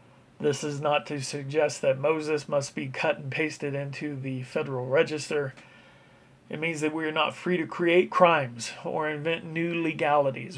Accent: American